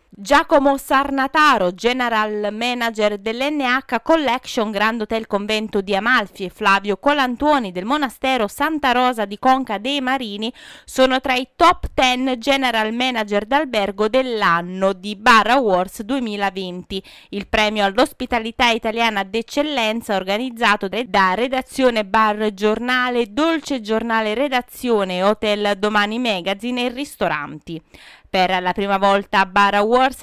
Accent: native